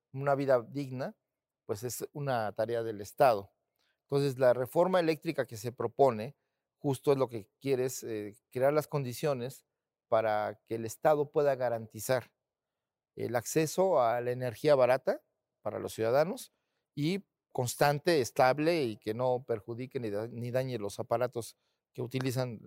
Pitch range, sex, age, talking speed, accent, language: 120-150 Hz, male, 40-59, 145 wpm, Mexican, Spanish